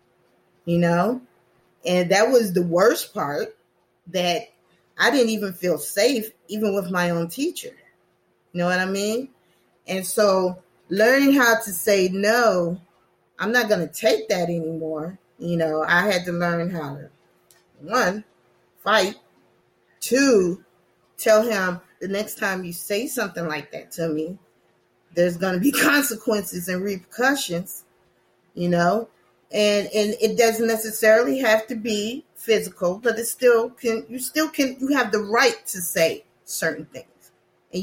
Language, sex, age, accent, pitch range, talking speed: English, female, 20-39, American, 175-225 Hz, 150 wpm